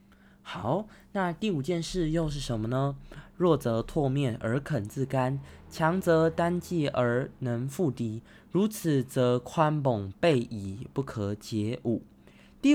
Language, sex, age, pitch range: Chinese, male, 20-39, 120-170 Hz